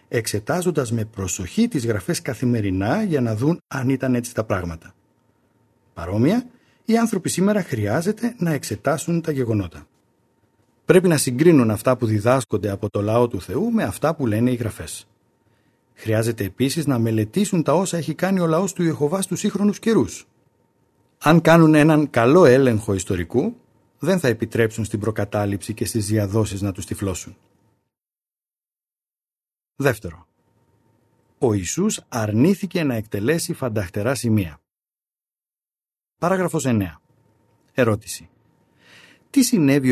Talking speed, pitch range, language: 130 wpm, 105-160 Hz, Greek